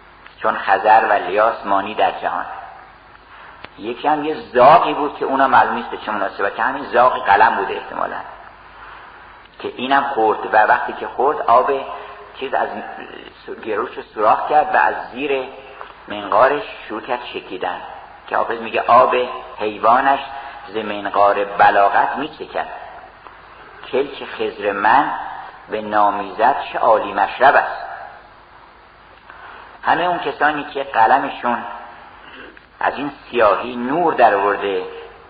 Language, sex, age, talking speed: Persian, male, 50-69, 120 wpm